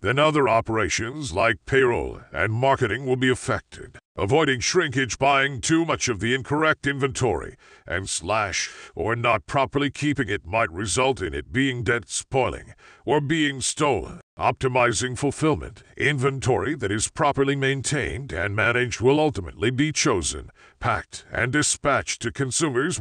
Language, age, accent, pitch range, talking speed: English, 50-69, American, 125-155 Hz, 140 wpm